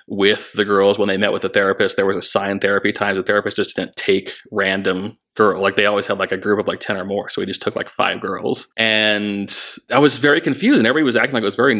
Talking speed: 275 wpm